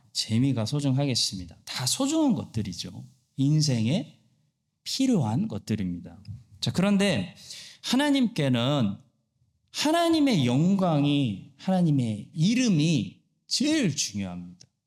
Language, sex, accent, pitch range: Korean, male, native, 115-170 Hz